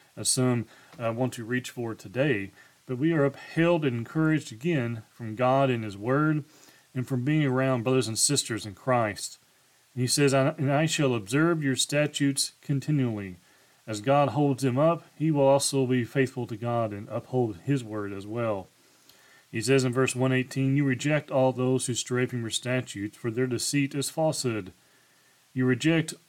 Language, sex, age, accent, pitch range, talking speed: English, male, 30-49, American, 120-145 Hz, 175 wpm